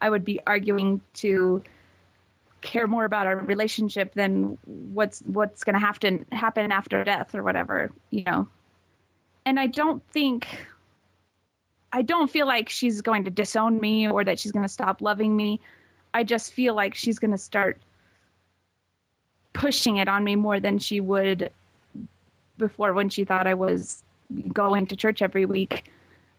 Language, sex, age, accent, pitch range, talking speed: English, female, 20-39, American, 195-240 Hz, 165 wpm